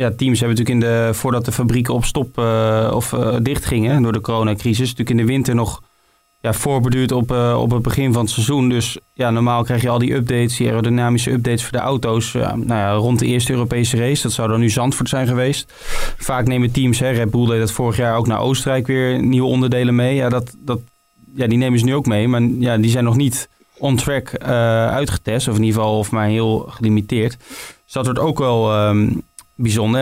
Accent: Dutch